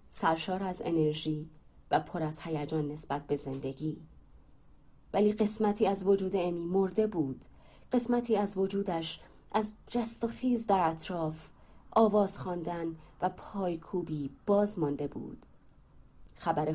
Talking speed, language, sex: 125 wpm, Persian, female